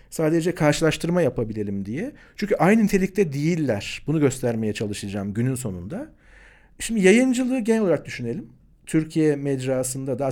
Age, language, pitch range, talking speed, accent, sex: 50-69, Turkish, 120-180 Hz, 120 wpm, native, male